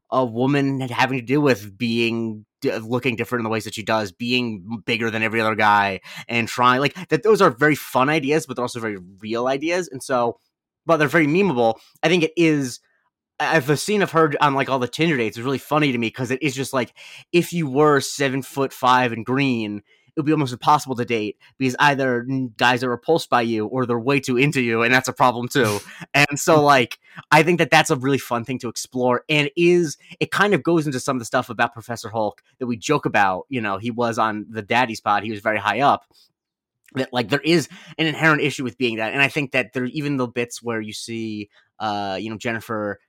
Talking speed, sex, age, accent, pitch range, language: 235 wpm, male, 30-49, American, 115-145 Hz, English